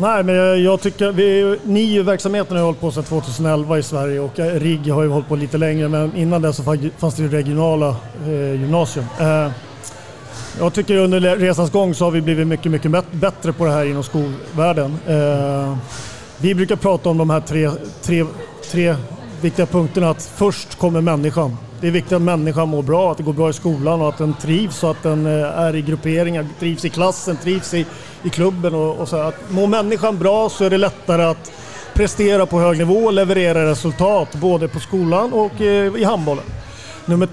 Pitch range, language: 155-185 Hz, Swedish